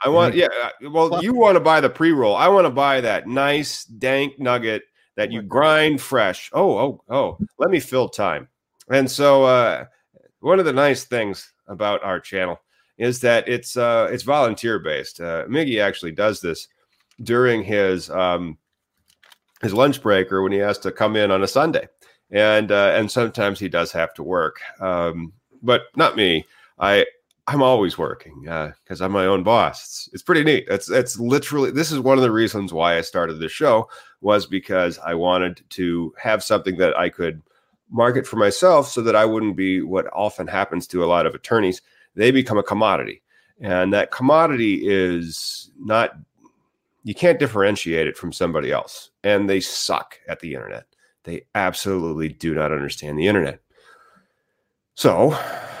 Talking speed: 175 wpm